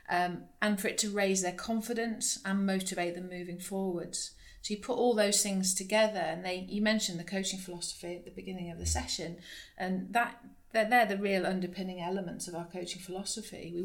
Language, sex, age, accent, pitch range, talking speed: English, female, 40-59, British, 175-195 Hz, 200 wpm